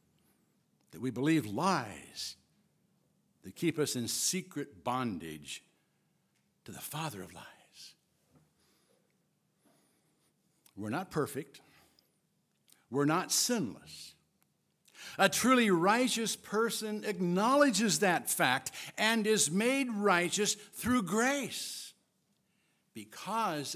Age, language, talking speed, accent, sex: 60-79, English, 85 wpm, American, male